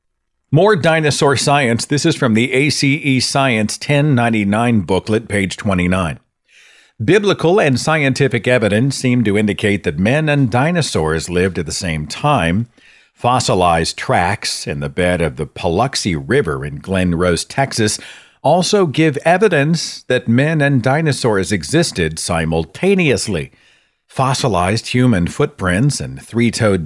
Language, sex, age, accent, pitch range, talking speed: English, male, 50-69, American, 95-140 Hz, 125 wpm